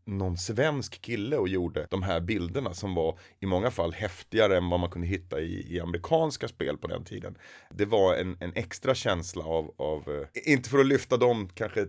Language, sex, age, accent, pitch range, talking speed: Swedish, male, 30-49, native, 90-125 Hz, 205 wpm